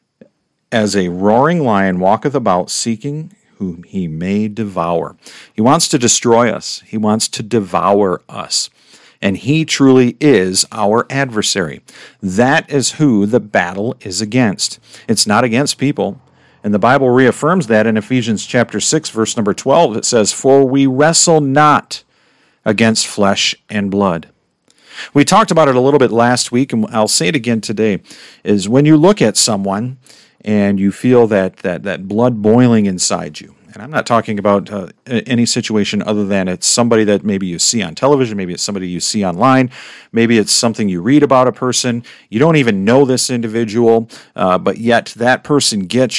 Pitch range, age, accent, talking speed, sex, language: 100-130 Hz, 50-69, American, 175 wpm, male, English